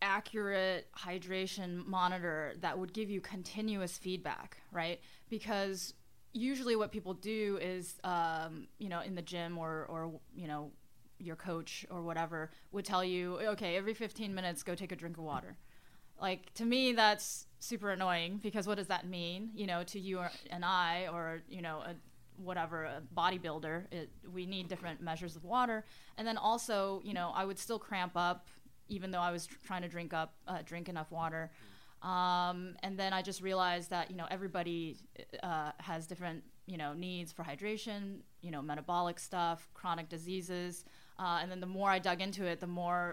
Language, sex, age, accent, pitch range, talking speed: English, female, 10-29, American, 170-195 Hz, 180 wpm